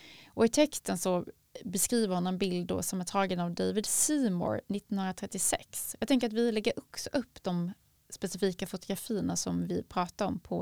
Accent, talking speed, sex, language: native, 175 wpm, female, Swedish